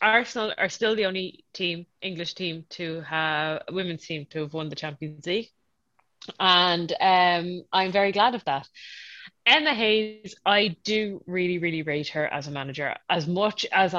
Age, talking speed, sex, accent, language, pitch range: 20-39, 165 wpm, female, Irish, English, 160-195 Hz